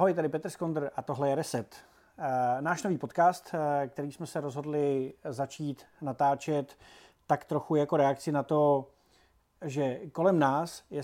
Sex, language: male, Czech